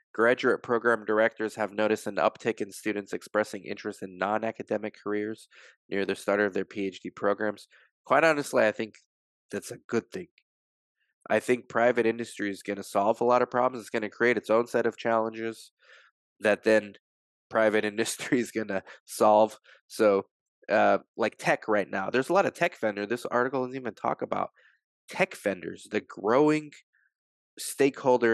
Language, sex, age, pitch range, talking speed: English, male, 20-39, 105-125 Hz, 170 wpm